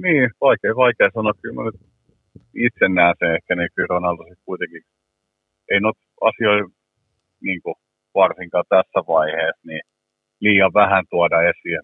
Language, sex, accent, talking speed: Finnish, male, native, 135 wpm